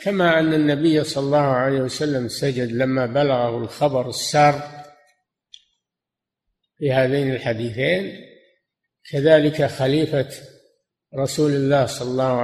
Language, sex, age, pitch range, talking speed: Arabic, male, 50-69, 130-150 Hz, 100 wpm